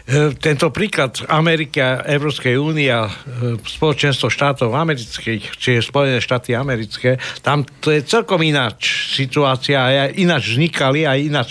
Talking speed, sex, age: 130 wpm, male, 60-79